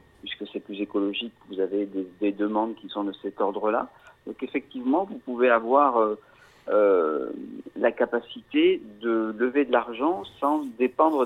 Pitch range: 105-130 Hz